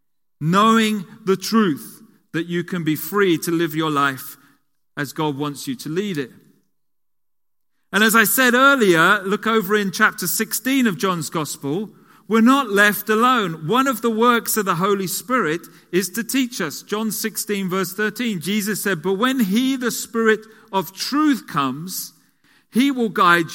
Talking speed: 165 wpm